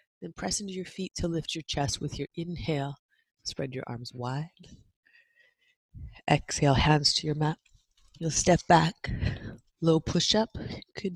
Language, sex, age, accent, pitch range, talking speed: English, female, 30-49, American, 135-175 Hz, 145 wpm